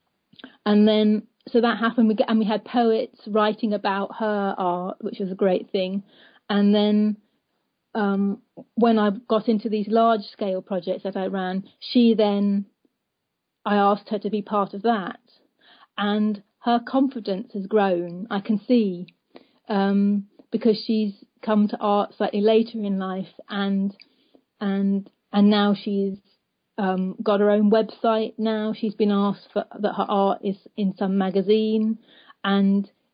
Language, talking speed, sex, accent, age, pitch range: English, 150 wpm, female, British, 30-49, 200-225 Hz